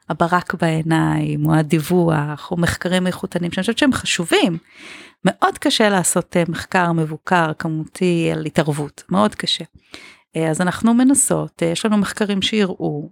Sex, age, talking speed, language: female, 40-59, 130 wpm, Hebrew